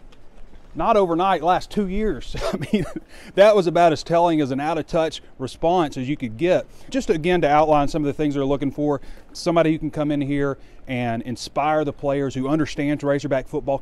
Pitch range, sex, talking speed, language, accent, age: 125-160 Hz, male, 195 wpm, English, American, 30-49